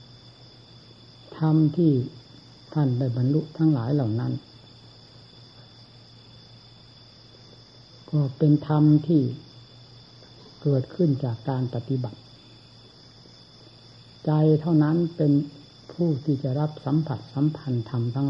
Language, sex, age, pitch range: Thai, female, 60-79, 120-145 Hz